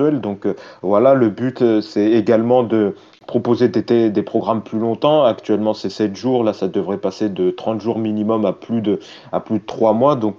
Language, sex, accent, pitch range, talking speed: French, male, French, 95-115 Hz, 215 wpm